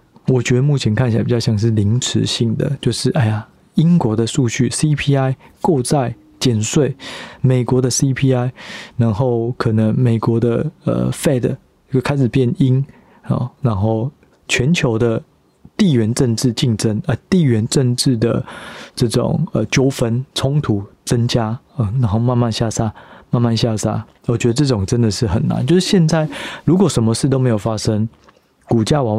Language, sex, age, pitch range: Chinese, male, 20-39, 115-135 Hz